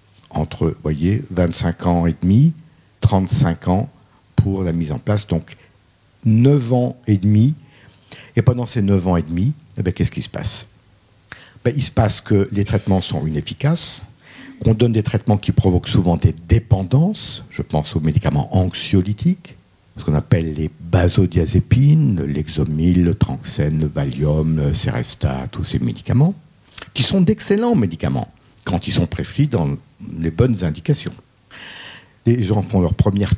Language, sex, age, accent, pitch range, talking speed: French, male, 50-69, French, 90-125 Hz, 160 wpm